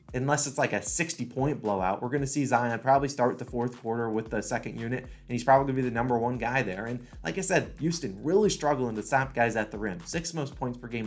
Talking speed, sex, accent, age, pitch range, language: 260 wpm, male, American, 20-39, 115-140 Hz, English